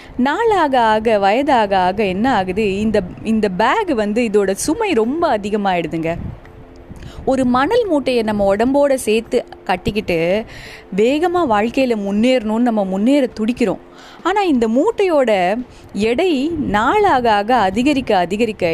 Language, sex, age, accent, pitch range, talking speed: English, female, 20-39, Indian, 205-300 Hz, 100 wpm